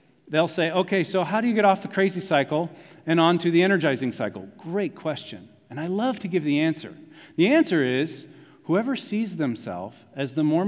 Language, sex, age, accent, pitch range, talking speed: English, male, 40-59, American, 110-165 Hz, 200 wpm